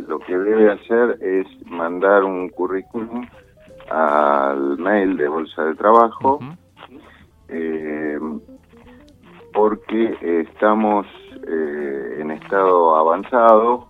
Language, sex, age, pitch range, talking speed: Spanish, male, 50-69, 80-105 Hz, 90 wpm